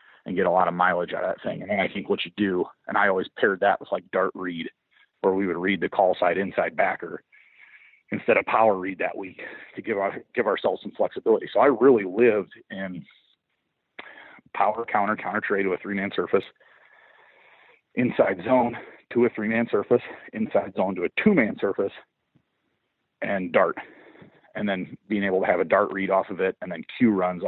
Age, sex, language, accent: 40-59, male, English, American